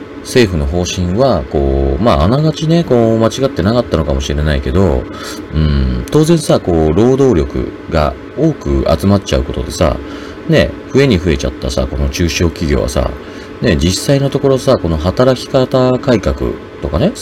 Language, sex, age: Japanese, male, 40-59